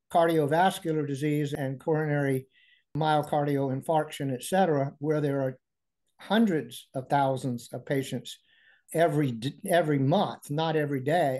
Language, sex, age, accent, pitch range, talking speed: English, male, 50-69, American, 150-185 Hz, 115 wpm